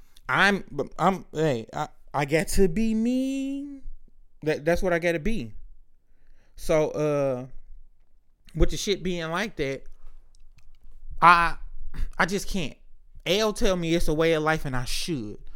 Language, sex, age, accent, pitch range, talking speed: English, male, 20-39, American, 135-185 Hz, 145 wpm